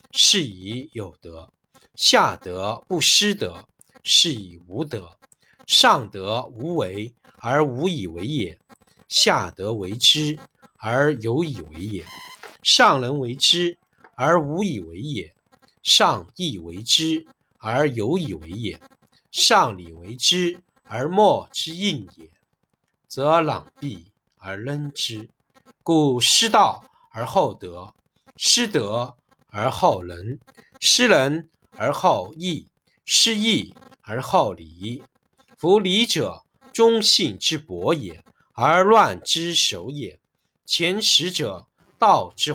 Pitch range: 110-170 Hz